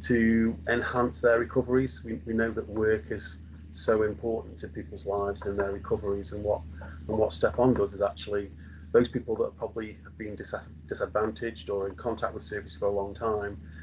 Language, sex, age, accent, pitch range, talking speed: English, male, 30-49, British, 80-110 Hz, 190 wpm